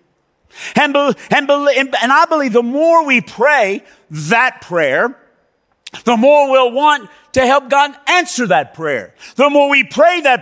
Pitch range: 205-295 Hz